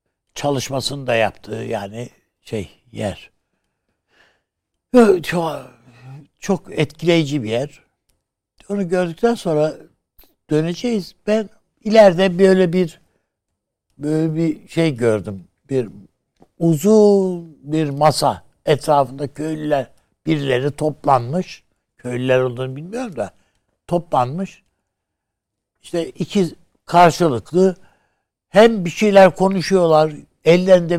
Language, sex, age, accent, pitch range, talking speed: Turkish, male, 60-79, native, 115-175 Hz, 85 wpm